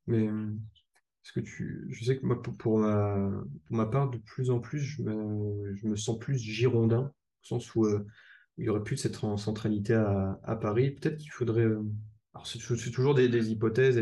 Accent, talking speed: French, 210 wpm